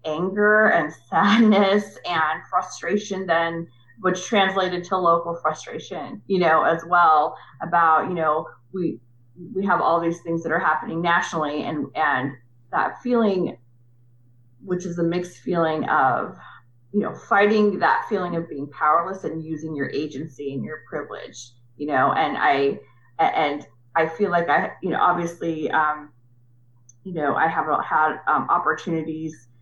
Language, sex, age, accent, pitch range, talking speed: English, female, 30-49, American, 145-180 Hz, 150 wpm